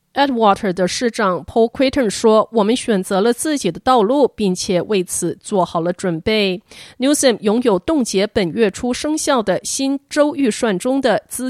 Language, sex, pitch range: Chinese, female, 185-250 Hz